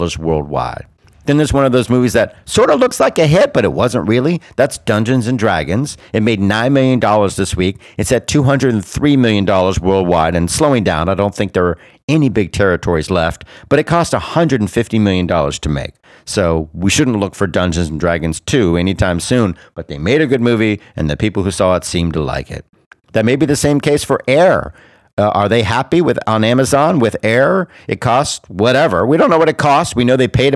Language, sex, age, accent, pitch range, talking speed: English, male, 50-69, American, 95-130 Hz, 215 wpm